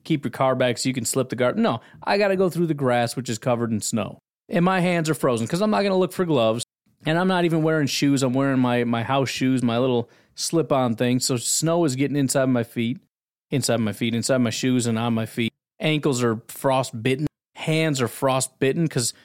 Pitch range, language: 120-175 Hz, English